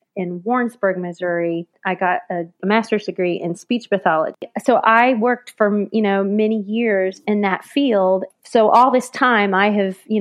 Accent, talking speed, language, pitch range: American, 170 wpm, English, 185-220 Hz